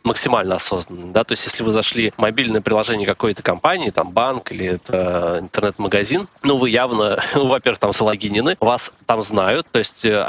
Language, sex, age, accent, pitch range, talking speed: Russian, male, 20-39, native, 105-120 Hz, 175 wpm